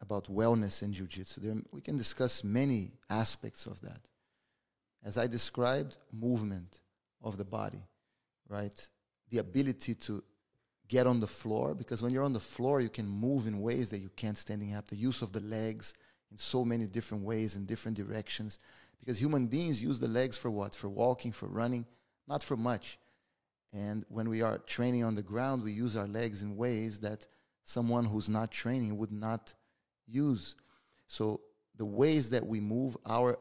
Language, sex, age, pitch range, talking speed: English, male, 30-49, 105-125 Hz, 180 wpm